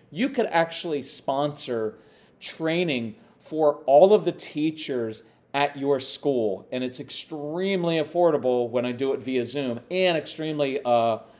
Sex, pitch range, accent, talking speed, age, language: male, 125-170 Hz, American, 135 wpm, 40-59, English